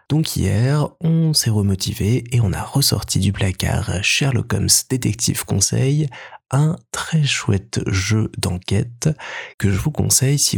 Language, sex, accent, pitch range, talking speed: French, male, French, 95-120 Hz, 140 wpm